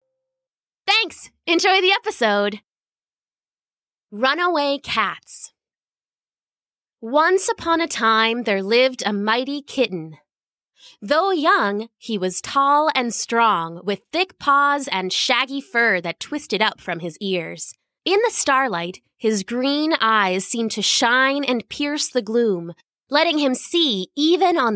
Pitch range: 195-285 Hz